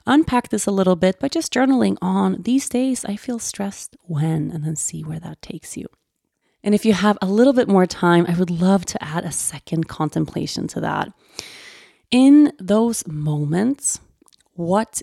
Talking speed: 180 wpm